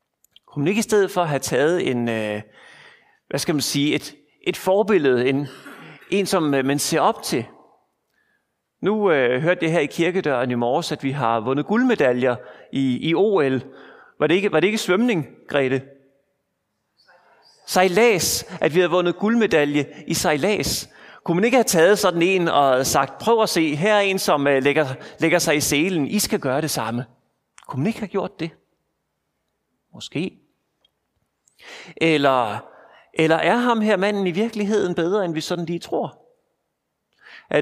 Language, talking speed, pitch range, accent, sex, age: Danish, 165 wpm, 140-190 Hz, native, male, 30-49